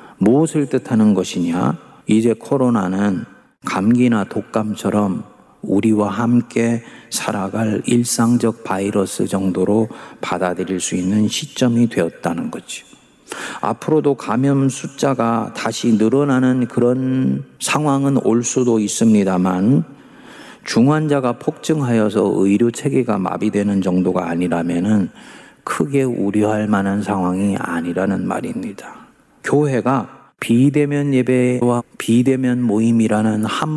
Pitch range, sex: 100-125 Hz, male